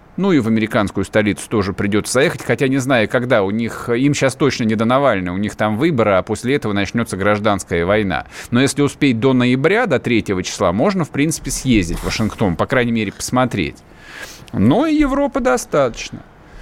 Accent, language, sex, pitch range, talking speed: native, Russian, male, 110-185 Hz, 190 wpm